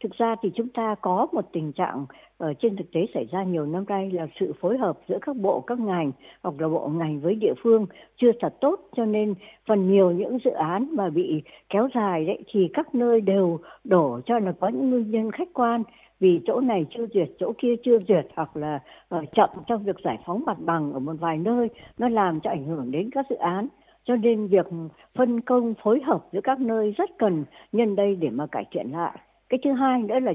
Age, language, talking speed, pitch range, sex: 60-79, Vietnamese, 230 wpm, 170-235 Hz, male